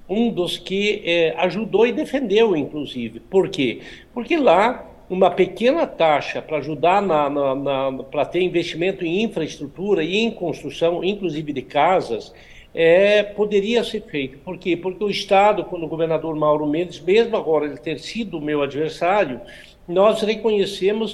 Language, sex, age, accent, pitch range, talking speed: English, male, 60-79, Brazilian, 175-220 Hz, 155 wpm